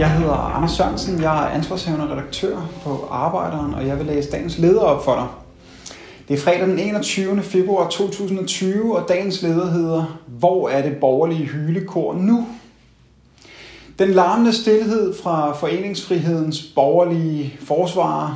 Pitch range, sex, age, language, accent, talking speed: 145-185 Hz, male, 30-49, Danish, native, 140 wpm